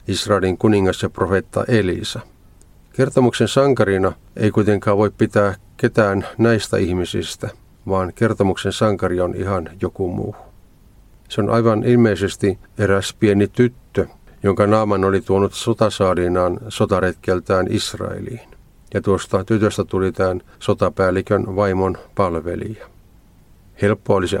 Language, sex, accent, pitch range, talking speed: Finnish, male, native, 95-110 Hz, 110 wpm